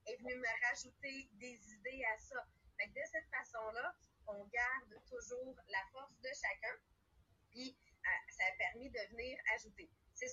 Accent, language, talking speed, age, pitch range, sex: Canadian, English, 155 wpm, 30-49, 215-285 Hz, female